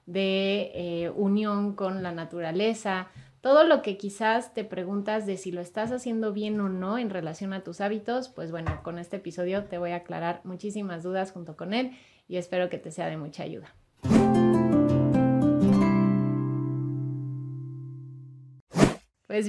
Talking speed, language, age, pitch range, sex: 150 wpm, Spanish, 30-49, 170-205 Hz, female